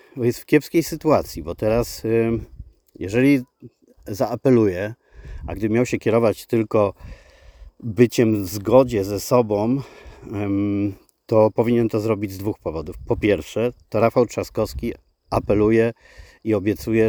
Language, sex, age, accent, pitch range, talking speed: Polish, male, 40-59, native, 100-120 Hz, 120 wpm